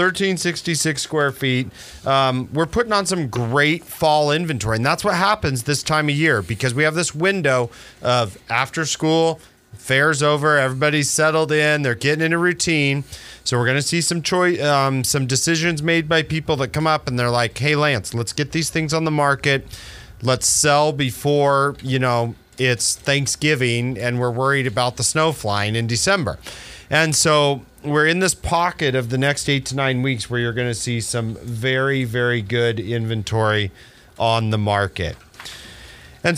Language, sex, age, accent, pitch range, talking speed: English, male, 40-59, American, 120-160 Hz, 175 wpm